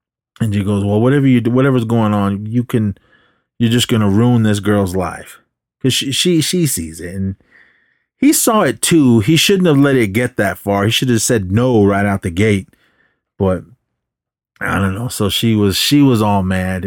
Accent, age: American, 30-49